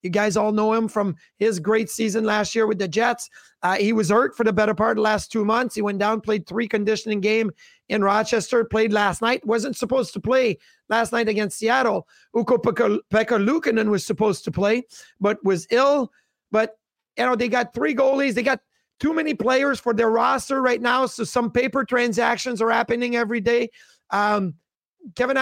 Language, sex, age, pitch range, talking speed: English, male, 30-49, 210-245 Hz, 195 wpm